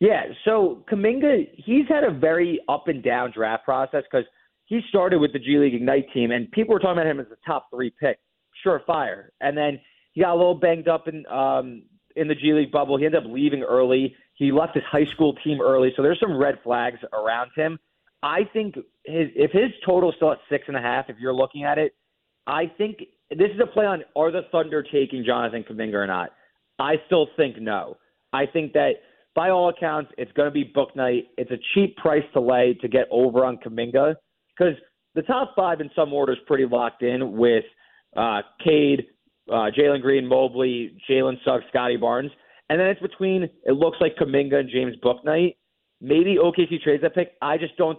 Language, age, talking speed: English, 30-49, 205 wpm